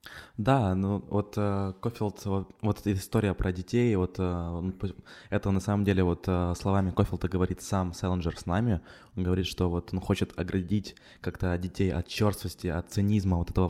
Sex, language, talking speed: male, Ukrainian, 180 wpm